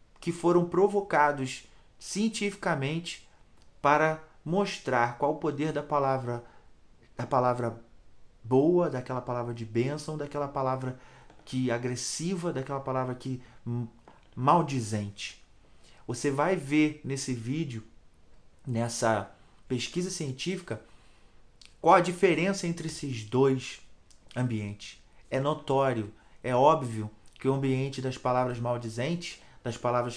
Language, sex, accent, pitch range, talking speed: Portuguese, male, Brazilian, 115-150 Hz, 105 wpm